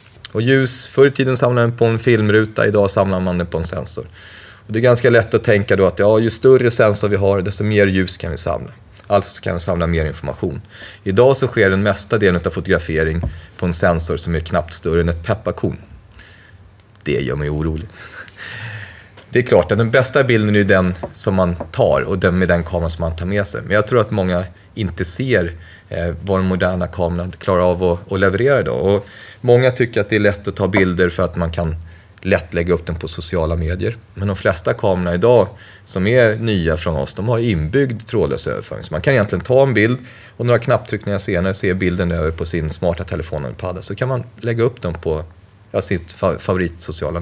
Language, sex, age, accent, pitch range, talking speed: English, male, 30-49, Swedish, 85-110 Hz, 220 wpm